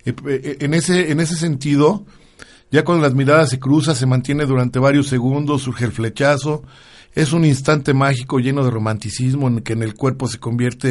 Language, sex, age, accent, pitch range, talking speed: Spanish, male, 50-69, Mexican, 125-145 Hz, 180 wpm